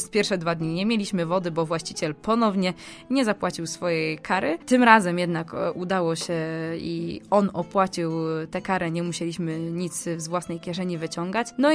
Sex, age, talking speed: female, 20-39, 160 wpm